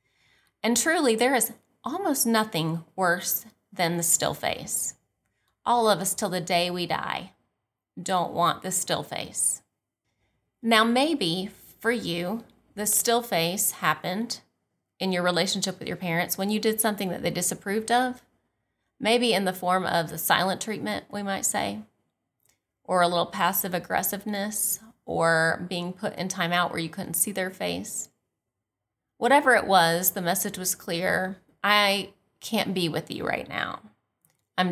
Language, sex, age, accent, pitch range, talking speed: English, female, 30-49, American, 165-205 Hz, 155 wpm